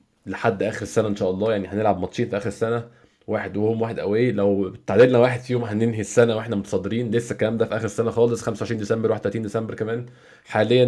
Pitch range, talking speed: 105-125 Hz, 205 wpm